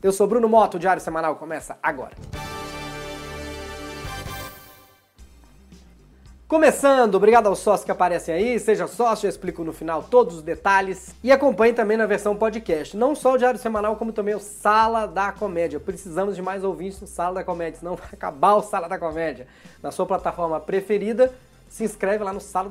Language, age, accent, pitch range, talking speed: Portuguese, 20-39, Brazilian, 160-220 Hz, 175 wpm